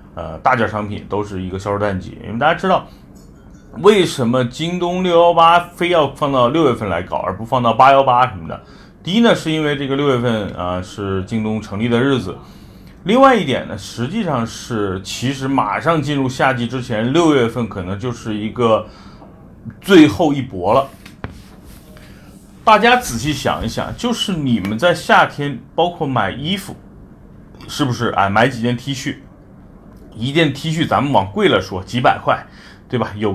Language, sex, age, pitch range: Chinese, male, 30-49, 100-140 Hz